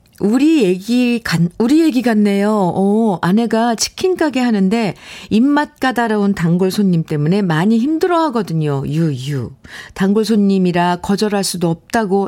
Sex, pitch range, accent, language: female, 170-230 Hz, native, Korean